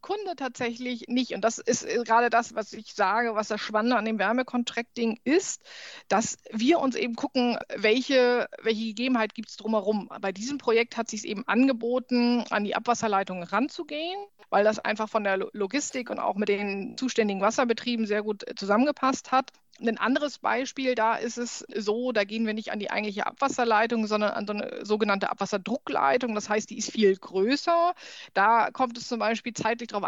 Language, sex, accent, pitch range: German, female, German, 210-245 Hz